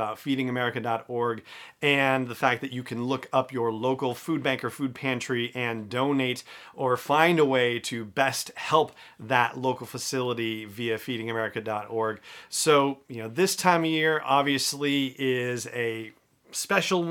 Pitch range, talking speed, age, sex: 120-140 Hz, 145 wpm, 40-59, male